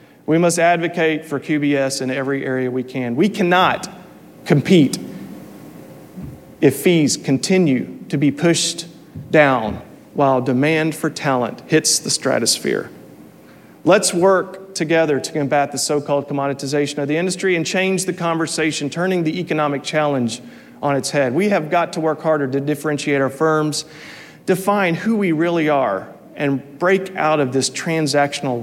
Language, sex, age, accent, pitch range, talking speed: English, male, 40-59, American, 140-175 Hz, 145 wpm